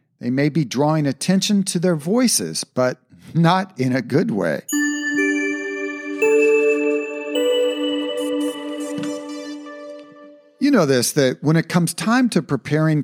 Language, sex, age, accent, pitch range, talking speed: English, male, 50-69, American, 115-180 Hz, 110 wpm